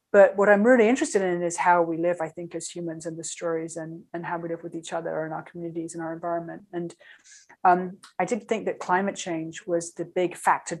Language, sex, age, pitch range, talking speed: English, female, 30-49, 165-185 Hz, 240 wpm